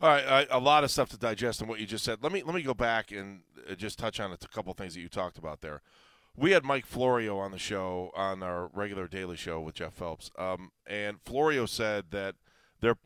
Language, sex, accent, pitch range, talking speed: English, male, American, 95-120 Hz, 245 wpm